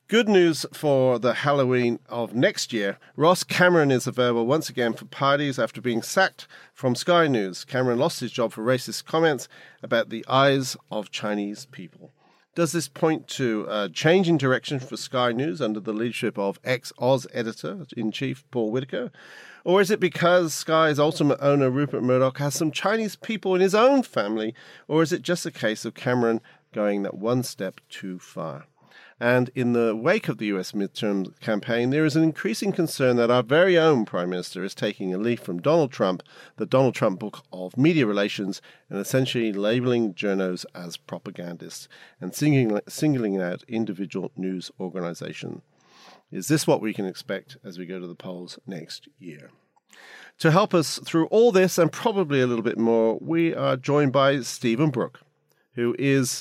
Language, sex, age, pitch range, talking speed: English, male, 40-59, 110-155 Hz, 175 wpm